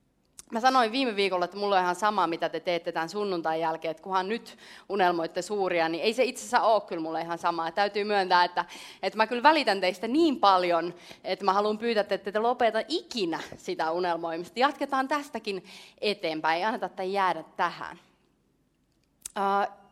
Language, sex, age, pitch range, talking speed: Finnish, female, 30-49, 170-230 Hz, 180 wpm